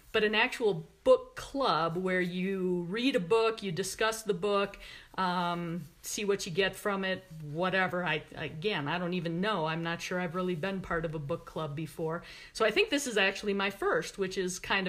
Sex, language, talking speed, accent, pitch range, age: female, English, 205 wpm, American, 185-235 Hz, 50-69